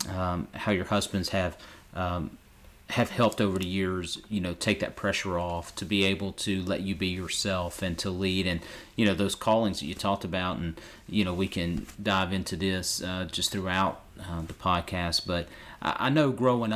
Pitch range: 95-105 Hz